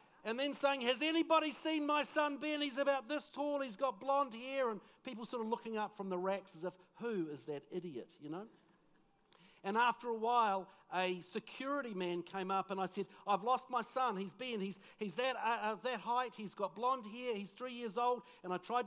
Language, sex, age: English, male, 50-69